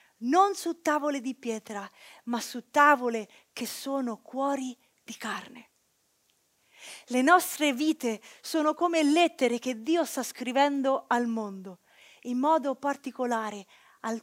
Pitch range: 240-315 Hz